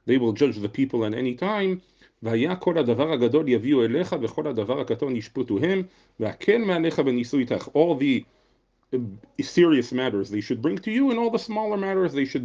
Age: 40-59